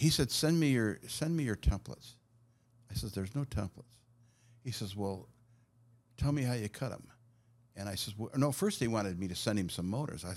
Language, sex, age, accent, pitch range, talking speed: English, male, 60-79, American, 100-120 Hz, 220 wpm